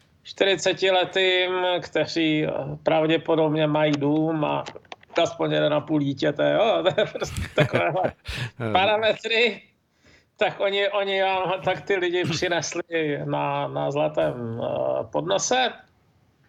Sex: male